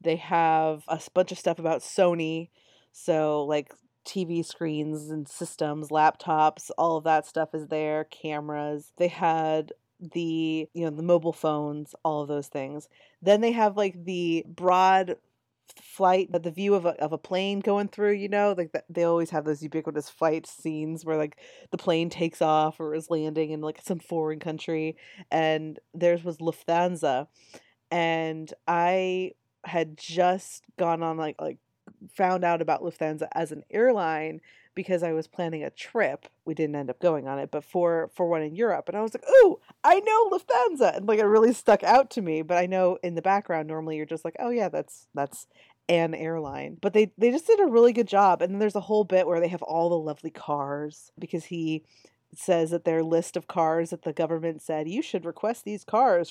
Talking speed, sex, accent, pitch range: 195 wpm, female, American, 155-185 Hz